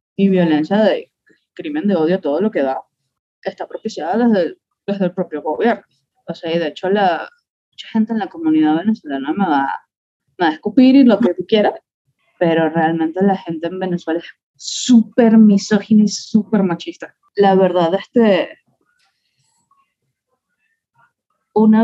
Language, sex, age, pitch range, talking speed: Spanish, female, 20-39, 180-230 Hz, 155 wpm